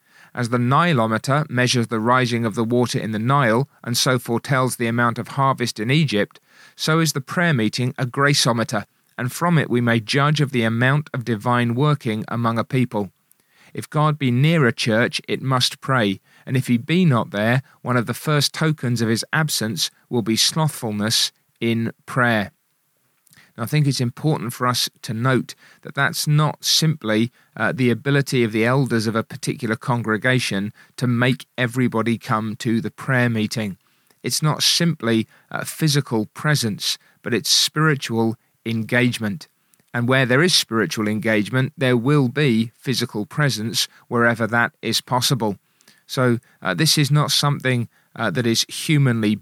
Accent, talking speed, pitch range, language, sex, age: British, 165 wpm, 115-145 Hz, English, male, 40-59